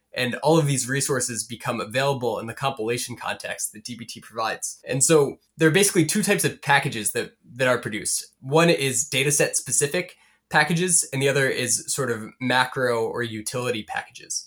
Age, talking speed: 20-39, 175 wpm